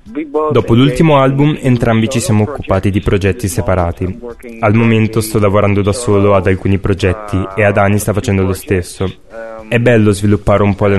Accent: native